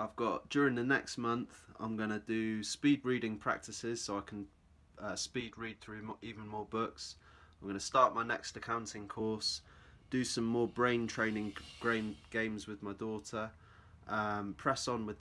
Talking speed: 180 wpm